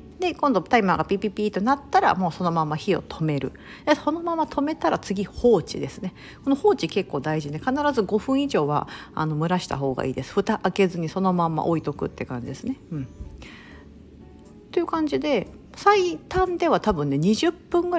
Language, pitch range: Japanese, 145-240 Hz